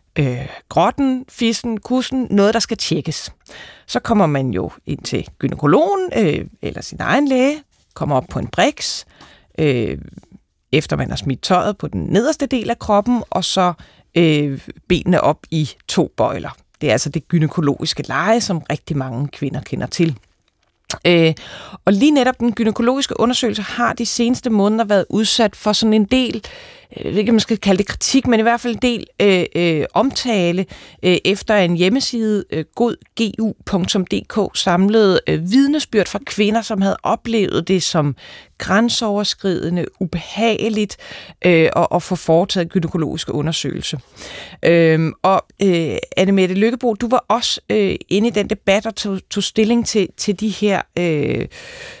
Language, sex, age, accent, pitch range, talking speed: Danish, female, 30-49, native, 175-230 Hz, 155 wpm